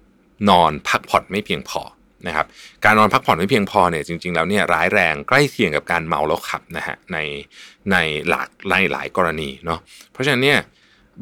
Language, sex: Thai, male